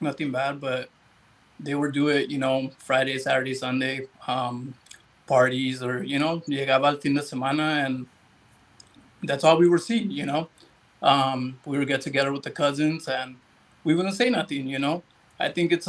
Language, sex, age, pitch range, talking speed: English, male, 30-49, 130-150 Hz, 165 wpm